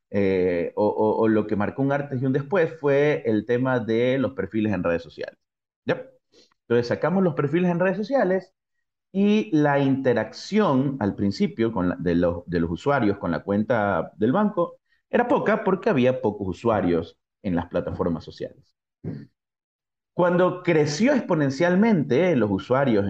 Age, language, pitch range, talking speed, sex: 30-49, Spanish, 110-175 Hz, 160 wpm, male